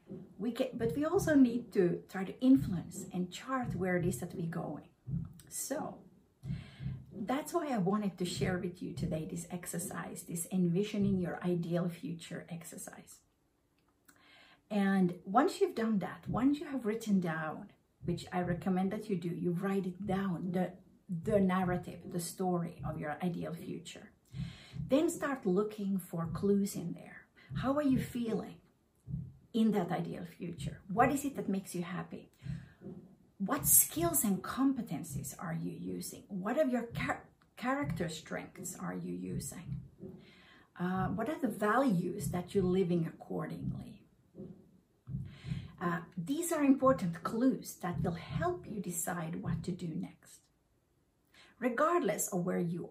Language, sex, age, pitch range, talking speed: English, female, 50-69, 175-210 Hz, 145 wpm